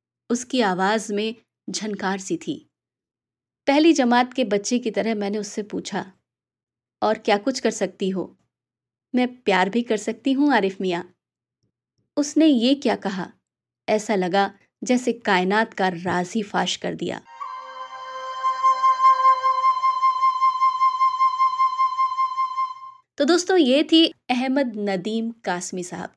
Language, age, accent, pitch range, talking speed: Hindi, 20-39, native, 200-295 Hz, 115 wpm